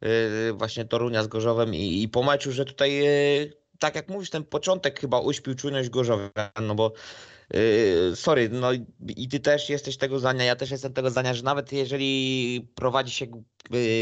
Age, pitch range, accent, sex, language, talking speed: 20-39, 110-135 Hz, native, male, Polish, 185 wpm